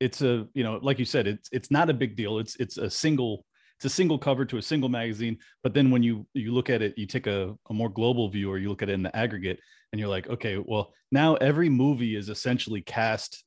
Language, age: English, 30-49